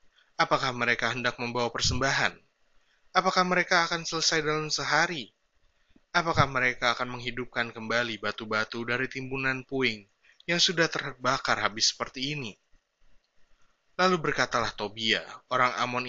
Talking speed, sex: 115 wpm, male